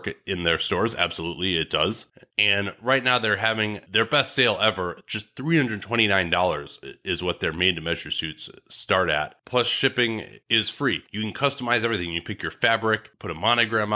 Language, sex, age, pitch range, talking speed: English, male, 30-49, 95-120 Hz, 175 wpm